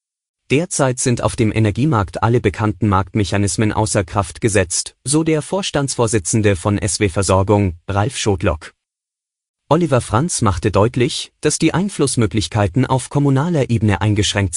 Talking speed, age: 120 wpm, 30-49